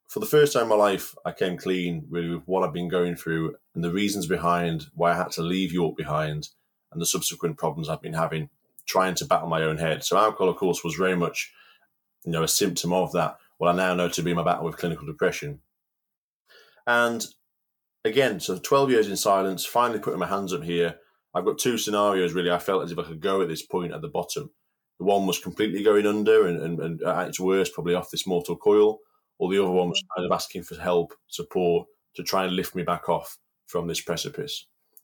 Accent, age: British, 20-39